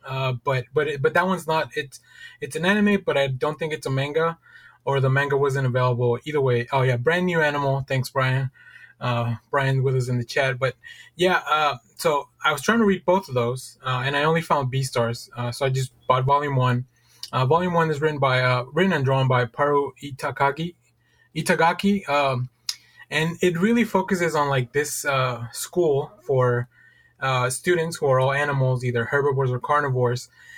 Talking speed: 195 wpm